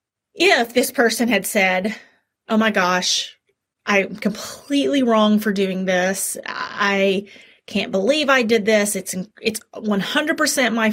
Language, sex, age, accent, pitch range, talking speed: English, female, 30-49, American, 195-260 Hz, 130 wpm